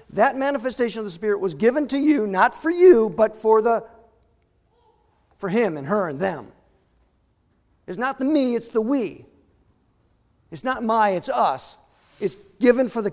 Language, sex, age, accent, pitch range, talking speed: English, male, 50-69, American, 200-265 Hz, 170 wpm